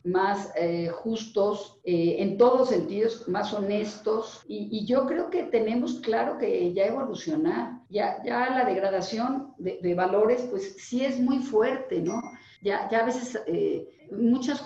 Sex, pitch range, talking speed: female, 180-245 Hz, 155 wpm